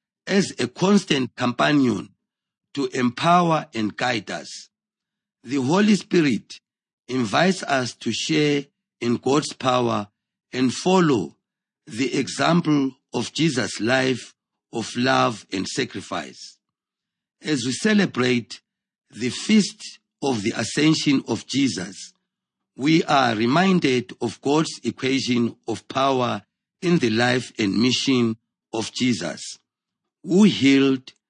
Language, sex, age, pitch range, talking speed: English, male, 50-69, 120-170 Hz, 110 wpm